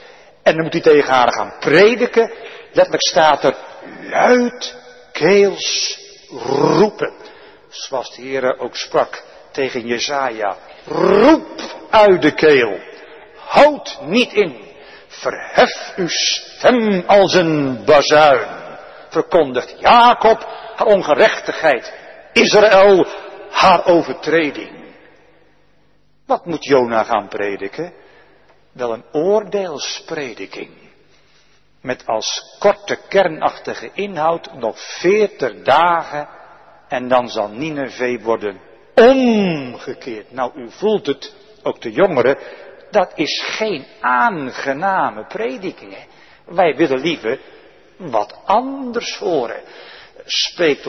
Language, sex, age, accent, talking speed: Dutch, male, 60-79, Dutch, 95 wpm